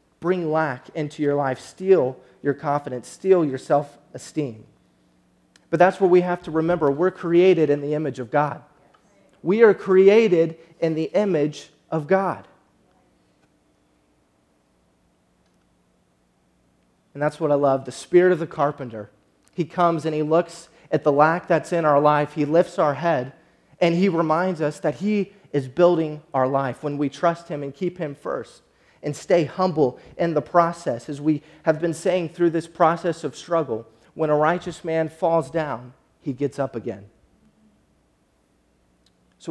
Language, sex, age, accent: English, male, 30-49, American